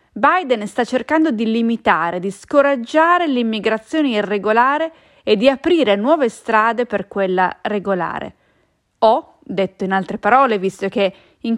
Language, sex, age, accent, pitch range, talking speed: English, female, 40-59, Italian, 200-275 Hz, 130 wpm